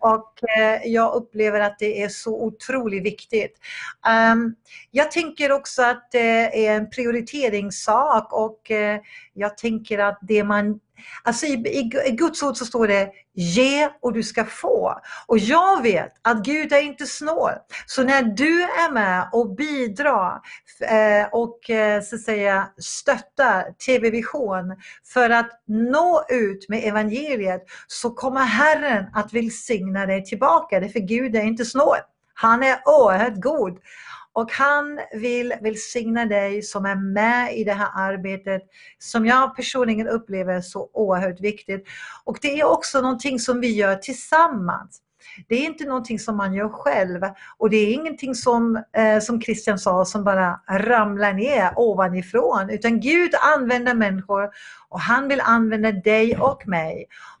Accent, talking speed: native, 155 wpm